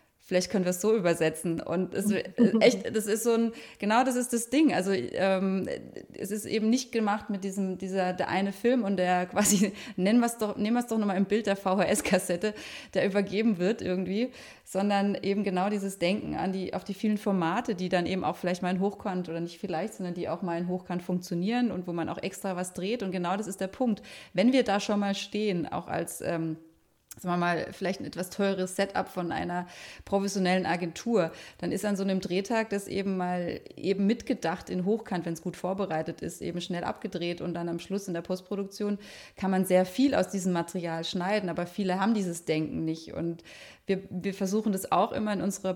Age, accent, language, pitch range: 30-49, German, German, 180-210 Hz